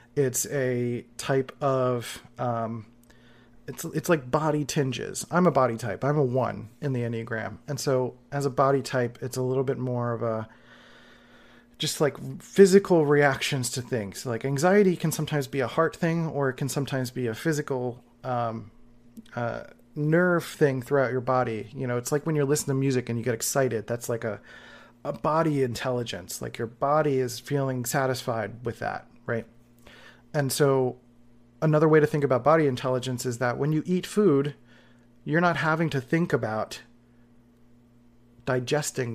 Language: English